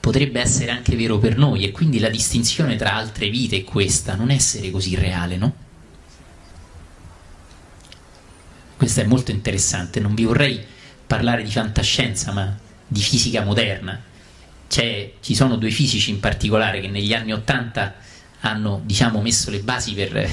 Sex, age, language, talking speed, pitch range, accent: male, 30-49, Italian, 150 wpm, 100-125 Hz, native